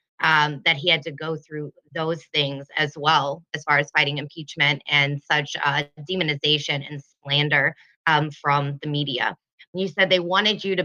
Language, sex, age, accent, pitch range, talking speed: English, female, 20-39, American, 160-185 Hz, 185 wpm